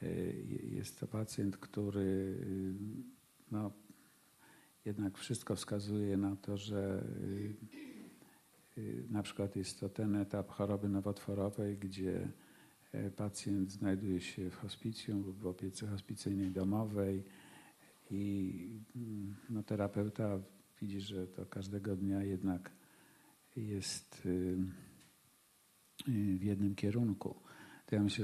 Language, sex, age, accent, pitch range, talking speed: Polish, male, 50-69, native, 95-105 Hz, 90 wpm